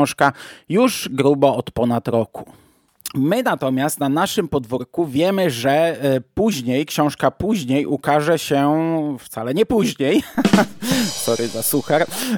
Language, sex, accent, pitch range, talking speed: Polish, male, native, 130-165 Hz, 115 wpm